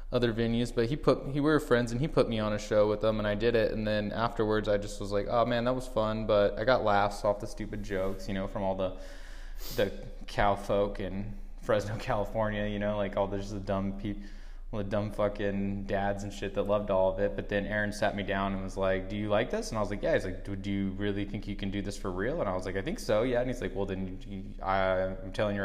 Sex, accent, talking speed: male, American, 290 wpm